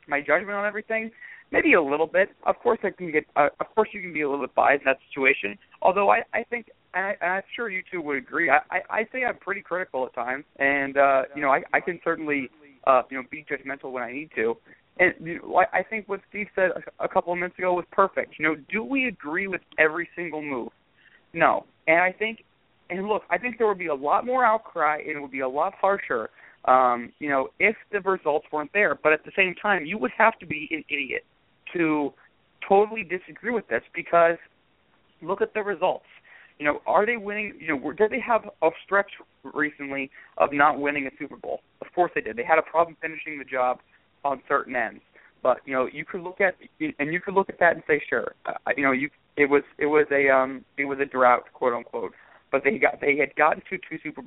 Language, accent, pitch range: English, American, 140-200 Hz